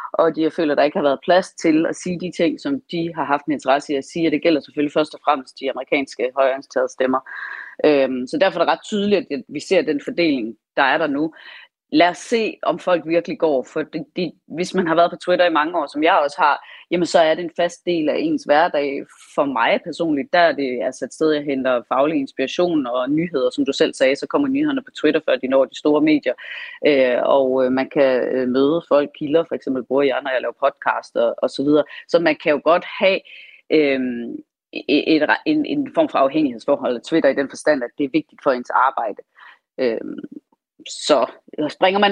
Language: Danish